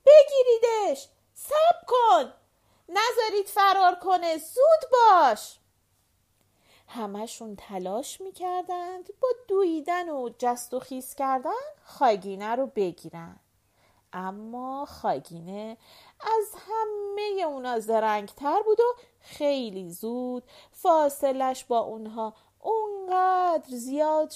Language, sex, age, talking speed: Persian, female, 40-59, 90 wpm